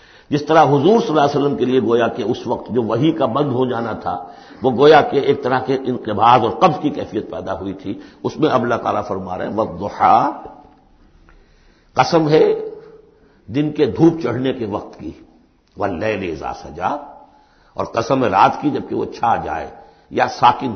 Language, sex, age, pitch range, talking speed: Urdu, male, 60-79, 125-165 Hz, 190 wpm